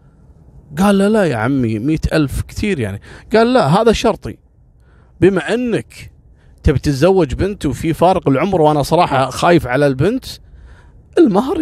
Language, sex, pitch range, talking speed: Arabic, male, 110-155 Hz, 135 wpm